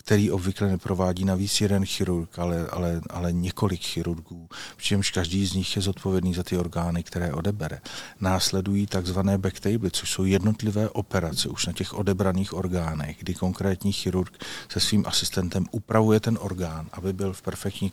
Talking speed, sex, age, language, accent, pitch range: 155 wpm, male, 40-59, Czech, native, 85-100 Hz